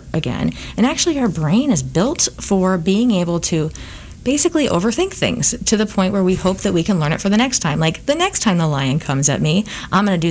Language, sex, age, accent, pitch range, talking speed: English, female, 30-49, American, 160-215 Hz, 245 wpm